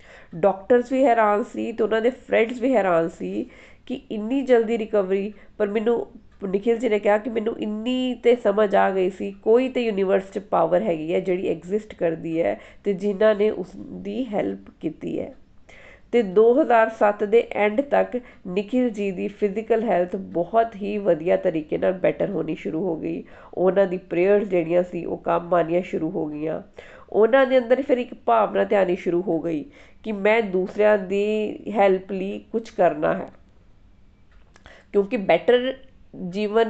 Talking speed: 145 wpm